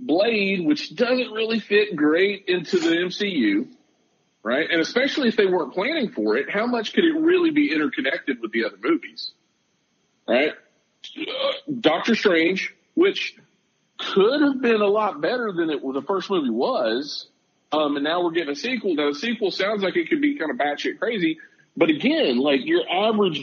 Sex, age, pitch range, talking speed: male, 40-59, 195-290 Hz, 180 wpm